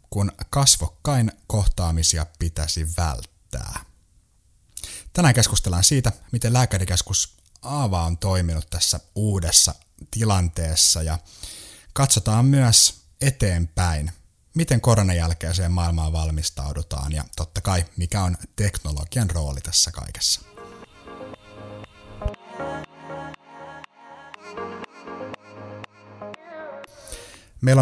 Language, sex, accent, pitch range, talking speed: Finnish, male, native, 80-105 Hz, 75 wpm